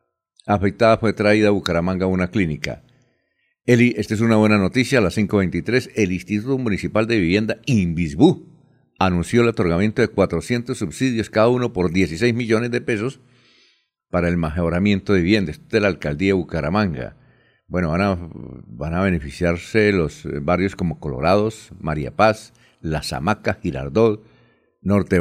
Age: 60-79